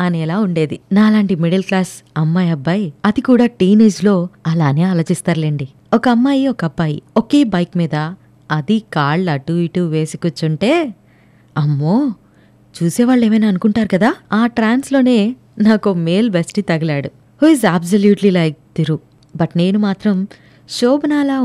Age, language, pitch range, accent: 20-39, Telugu, 160-220 Hz, native